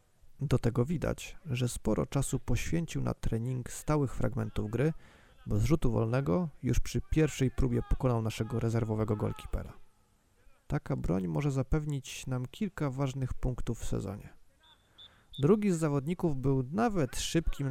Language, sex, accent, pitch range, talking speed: Polish, male, native, 110-135 Hz, 135 wpm